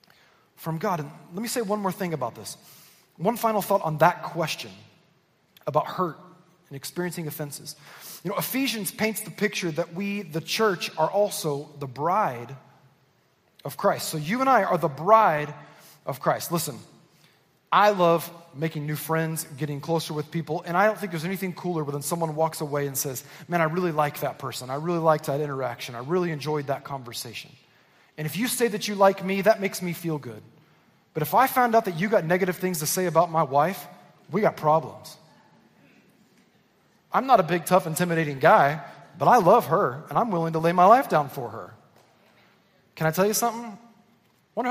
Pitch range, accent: 145-190 Hz, American